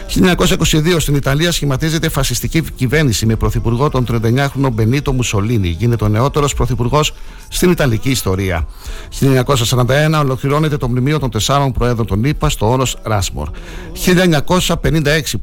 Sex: male